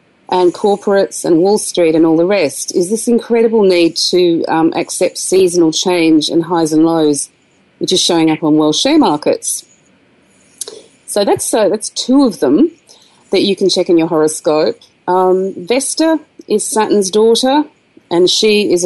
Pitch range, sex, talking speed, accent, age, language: 155-205 Hz, female, 160 wpm, Australian, 40-59, English